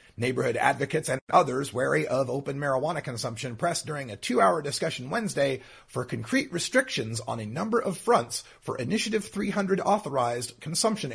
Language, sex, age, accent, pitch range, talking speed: English, male, 30-49, American, 120-195 Hz, 150 wpm